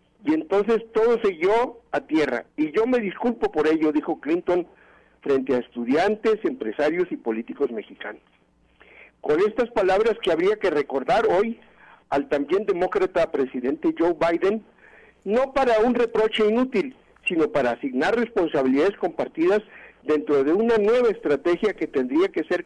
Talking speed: 145 wpm